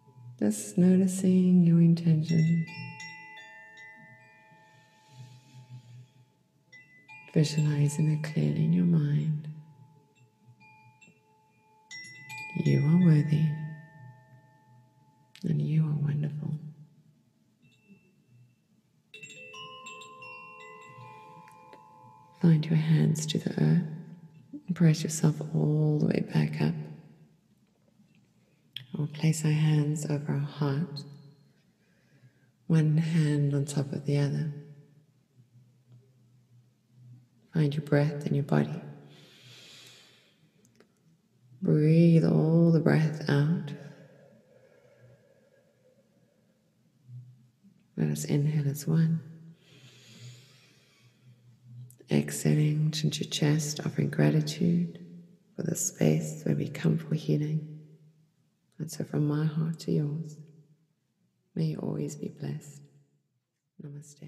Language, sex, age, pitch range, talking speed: English, female, 40-59, 130-165 Hz, 80 wpm